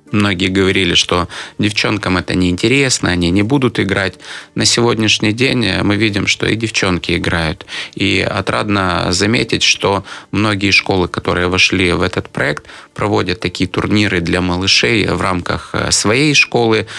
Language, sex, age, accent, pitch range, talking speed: Russian, male, 20-39, native, 90-110 Hz, 140 wpm